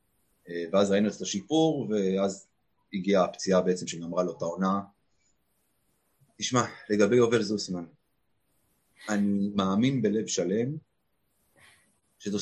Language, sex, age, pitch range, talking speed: Hebrew, male, 30-49, 100-145 Hz, 95 wpm